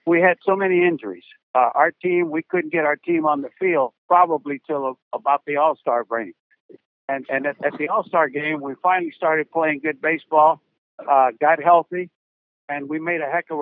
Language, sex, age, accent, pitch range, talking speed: English, male, 60-79, American, 145-185 Hz, 205 wpm